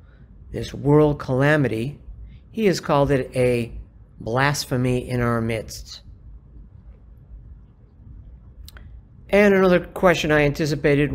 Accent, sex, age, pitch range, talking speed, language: American, male, 50-69, 110-150 Hz, 90 wpm, English